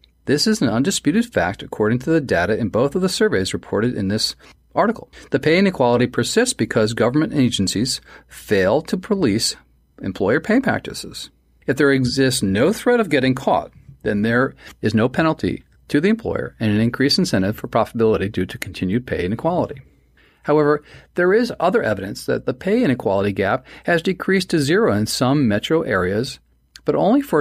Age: 40-59